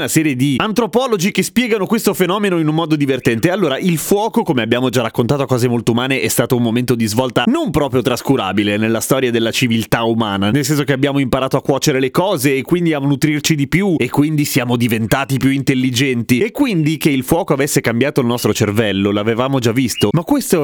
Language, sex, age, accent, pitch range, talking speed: Italian, male, 30-49, native, 120-165 Hz, 210 wpm